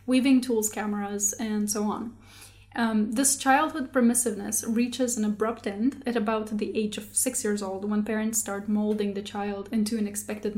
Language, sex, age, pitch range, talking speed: English, female, 10-29, 210-250 Hz, 175 wpm